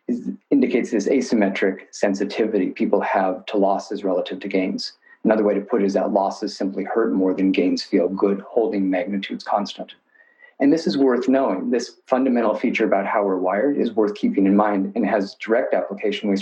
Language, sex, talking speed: English, male, 190 wpm